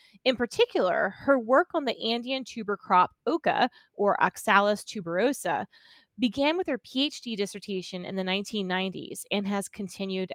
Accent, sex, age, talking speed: American, female, 20-39, 140 wpm